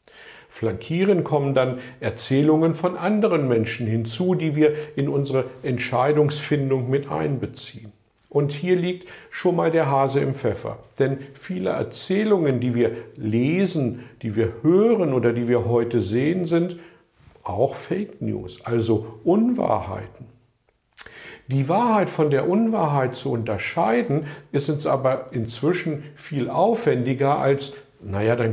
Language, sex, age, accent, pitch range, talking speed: German, male, 50-69, German, 120-160 Hz, 125 wpm